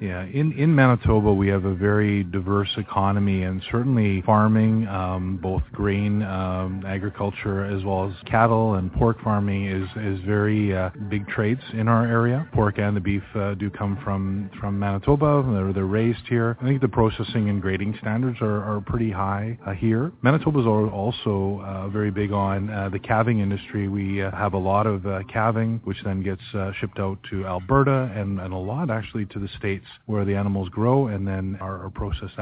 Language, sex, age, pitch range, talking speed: English, male, 30-49, 100-110 Hz, 190 wpm